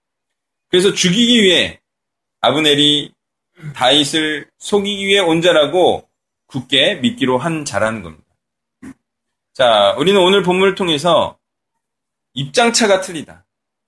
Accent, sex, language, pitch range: native, male, Korean, 135-185 Hz